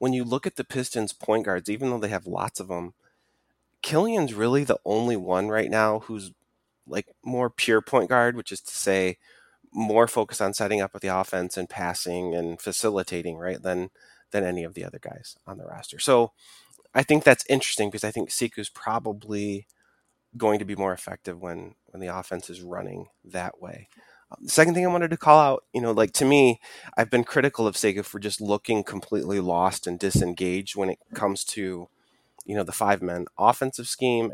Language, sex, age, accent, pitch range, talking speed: English, male, 30-49, American, 95-125 Hz, 195 wpm